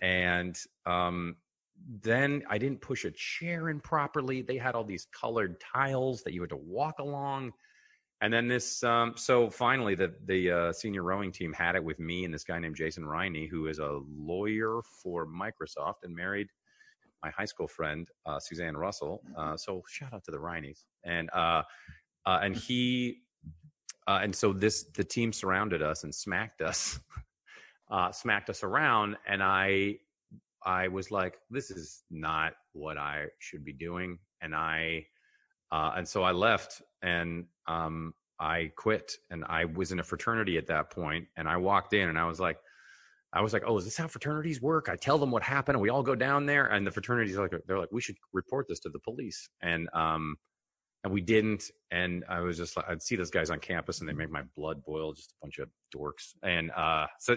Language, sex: English, male